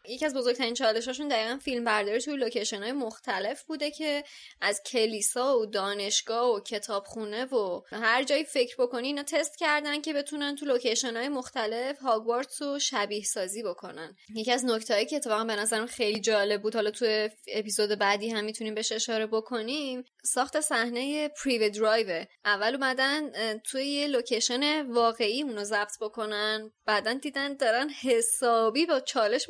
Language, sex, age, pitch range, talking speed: Persian, female, 20-39, 220-285 Hz, 150 wpm